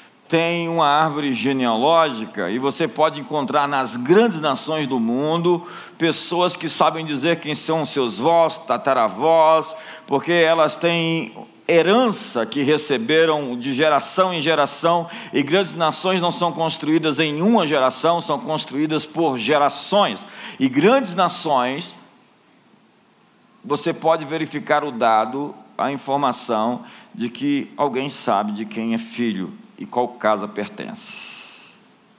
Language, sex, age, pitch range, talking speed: Portuguese, male, 50-69, 120-170 Hz, 125 wpm